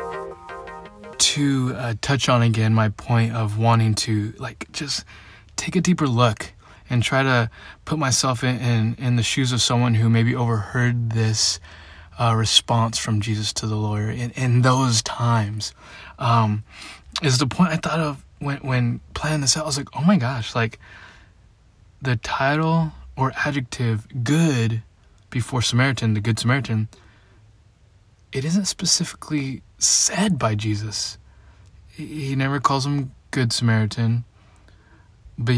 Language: English